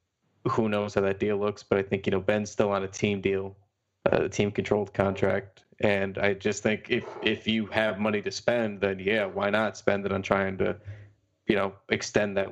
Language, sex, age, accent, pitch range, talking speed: English, male, 20-39, American, 100-110 Hz, 215 wpm